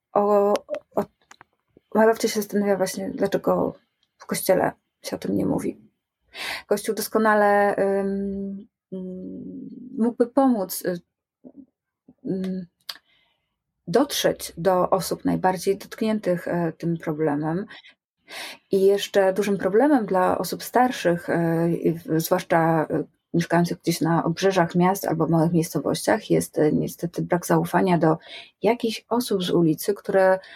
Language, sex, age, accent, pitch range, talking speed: Polish, female, 20-39, native, 175-215 Hz, 100 wpm